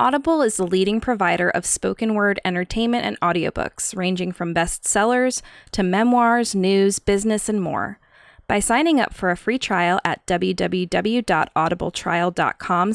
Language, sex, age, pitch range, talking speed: English, female, 20-39, 180-235 Hz, 135 wpm